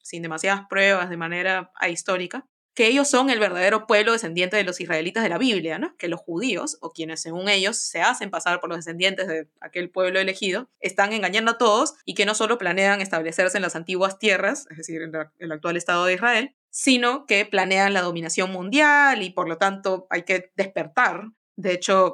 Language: English